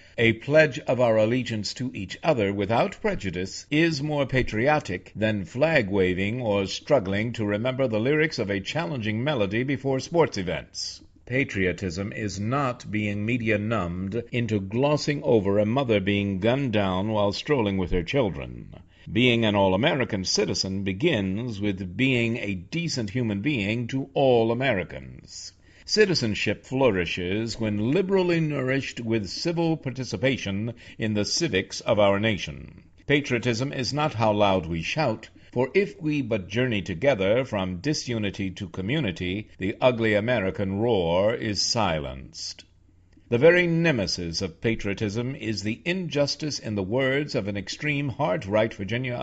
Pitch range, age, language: 95-130 Hz, 50-69, English